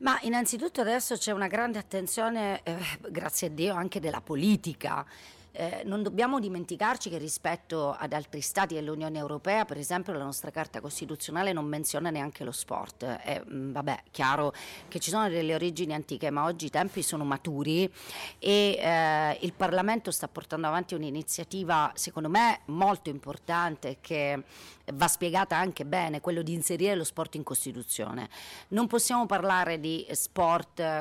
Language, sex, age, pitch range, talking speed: Italian, female, 40-59, 155-195 Hz, 155 wpm